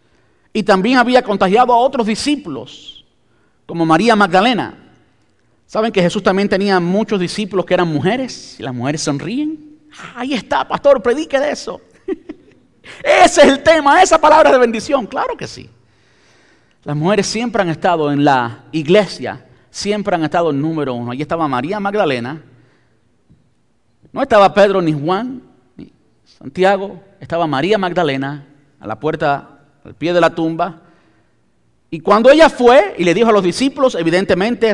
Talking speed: 155 wpm